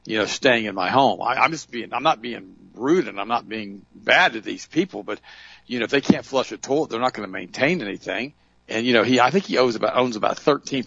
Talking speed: 270 wpm